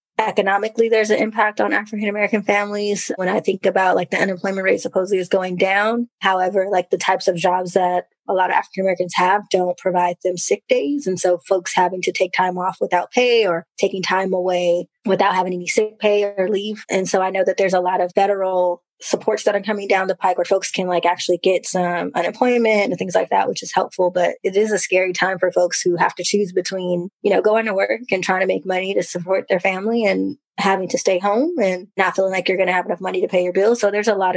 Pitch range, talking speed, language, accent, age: 185-205 Hz, 245 wpm, English, American, 20-39